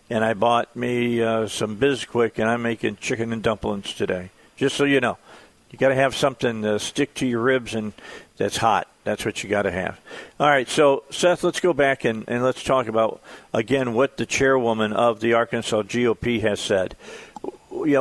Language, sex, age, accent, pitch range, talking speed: English, male, 50-69, American, 110-130 Hz, 200 wpm